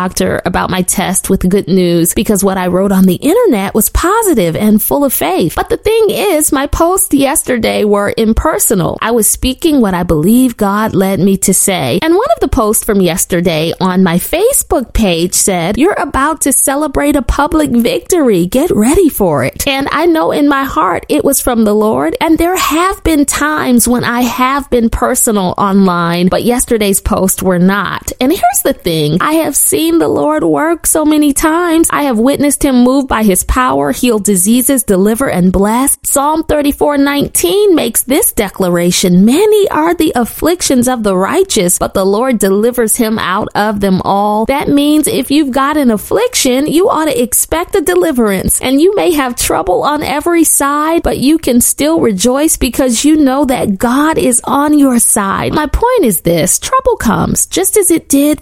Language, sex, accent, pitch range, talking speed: English, female, American, 200-305 Hz, 185 wpm